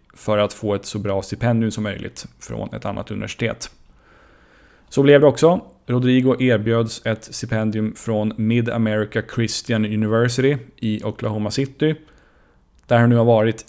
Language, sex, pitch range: Swedish, male, 105-120 Hz